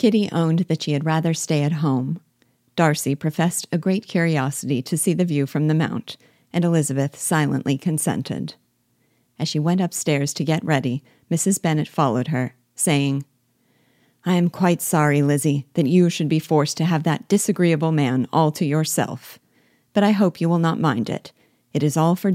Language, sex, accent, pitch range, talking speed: English, female, American, 140-175 Hz, 180 wpm